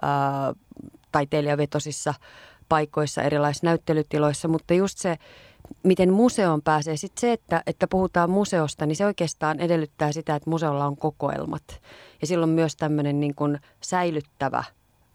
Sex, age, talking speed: female, 30-49, 125 wpm